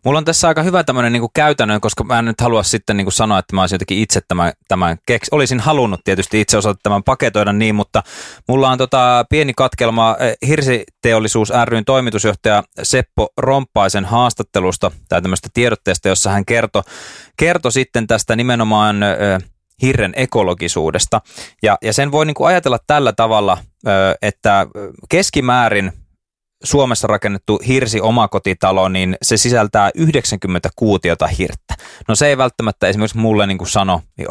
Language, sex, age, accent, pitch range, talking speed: Finnish, male, 20-39, native, 95-130 Hz, 145 wpm